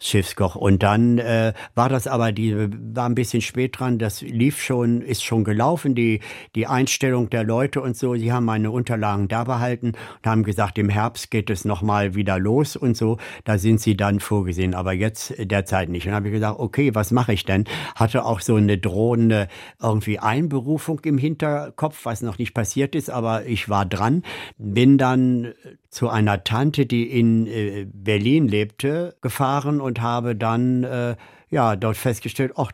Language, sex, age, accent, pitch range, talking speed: German, male, 60-79, German, 100-120 Hz, 180 wpm